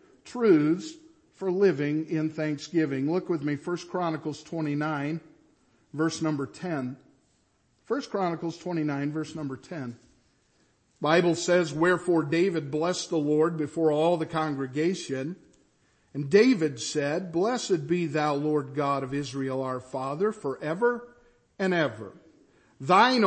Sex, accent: male, American